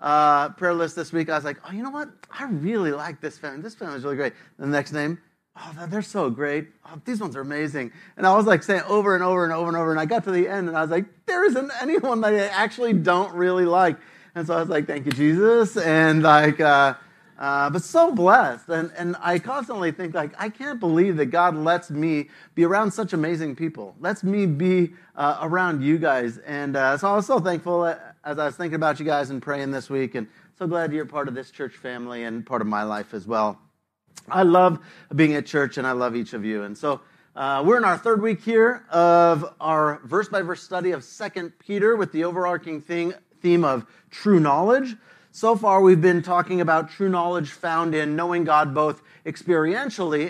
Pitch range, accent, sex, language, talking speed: 150-190 Hz, American, male, English, 225 wpm